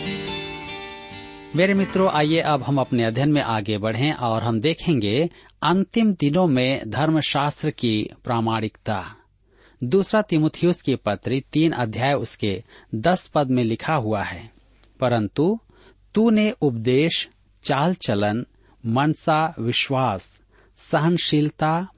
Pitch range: 110-165 Hz